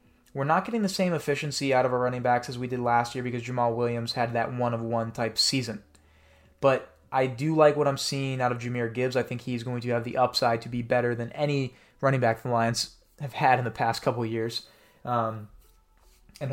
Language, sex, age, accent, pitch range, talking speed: English, male, 20-39, American, 120-135 Hz, 225 wpm